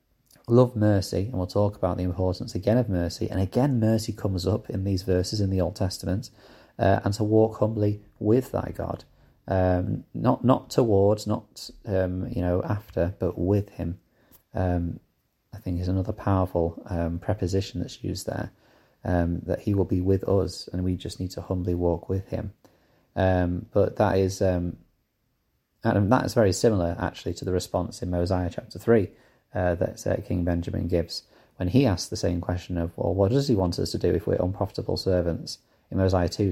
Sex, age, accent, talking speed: male, 30-49, British, 185 wpm